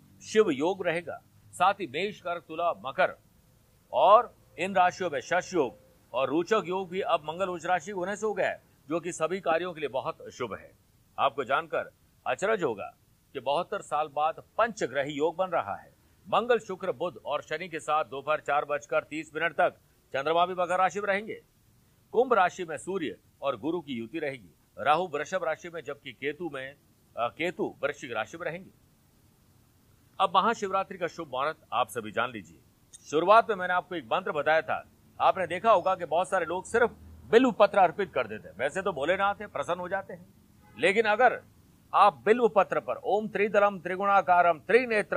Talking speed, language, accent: 155 wpm, Hindi, native